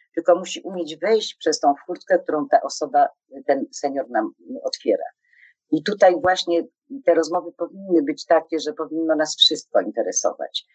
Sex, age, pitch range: female, 40-59, 150-180 Hz